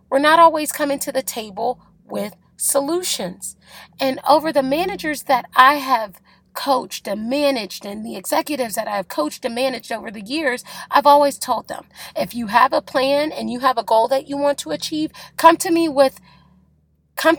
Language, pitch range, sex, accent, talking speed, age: English, 225-295 Hz, female, American, 185 wpm, 30-49